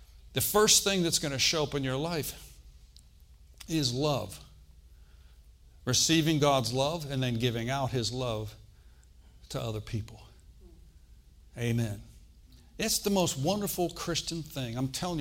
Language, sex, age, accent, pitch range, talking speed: English, male, 60-79, American, 100-150 Hz, 135 wpm